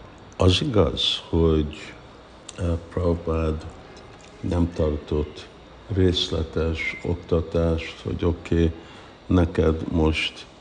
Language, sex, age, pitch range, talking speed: Hungarian, male, 60-79, 80-90 Hz, 75 wpm